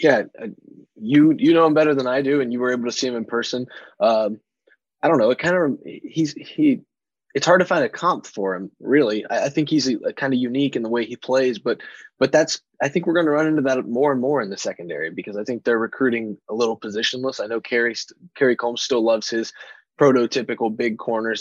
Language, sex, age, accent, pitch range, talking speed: English, male, 20-39, American, 110-140 Hz, 240 wpm